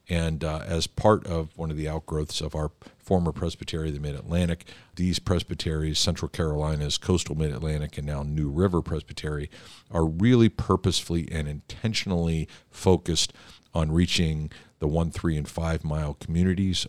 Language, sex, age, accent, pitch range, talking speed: English, male, 50-69, American, 75-90 Hz, 145 wpm